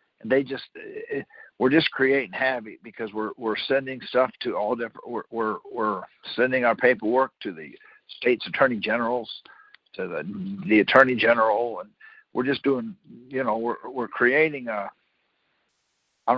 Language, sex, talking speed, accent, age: English, male, 155 wpm, American, 60-79